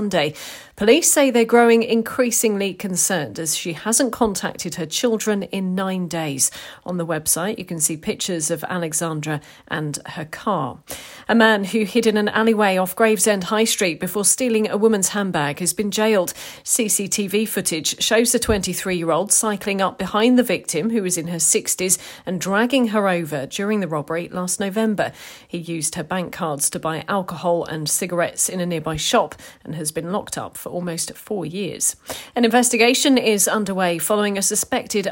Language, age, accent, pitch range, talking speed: English, 40-59, British, 170-225 Hz, 175 wpm